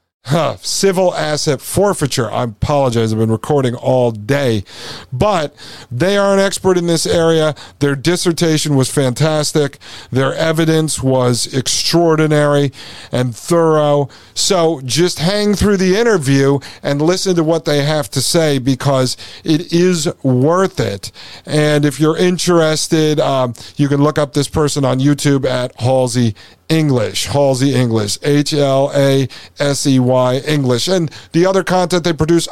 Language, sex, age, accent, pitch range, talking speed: English, male, 50-69, American, 130-160 Hz, 135 wpm